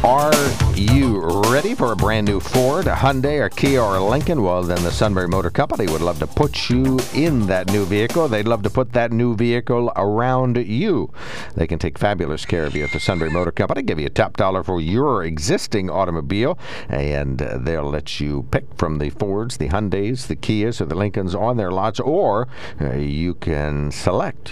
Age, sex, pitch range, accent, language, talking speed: 60-79, male, 75-110 Hz, American, English, 205 wpm